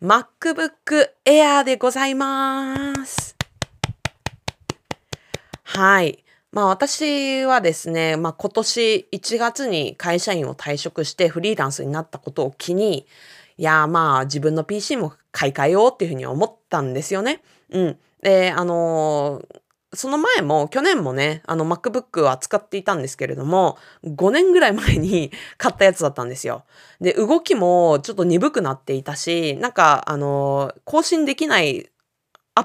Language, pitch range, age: Japanese, 160-245 Hz, 20-39